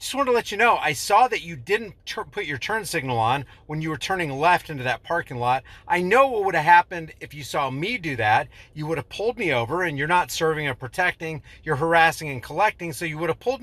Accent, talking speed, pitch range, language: American, 255 wpm, 130-185 Hz, English